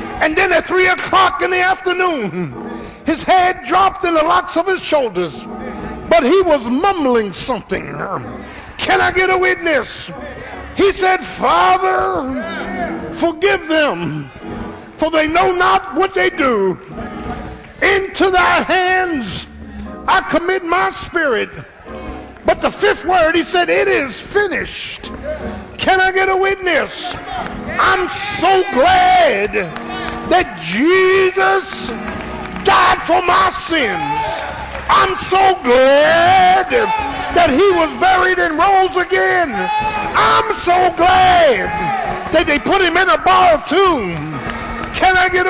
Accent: American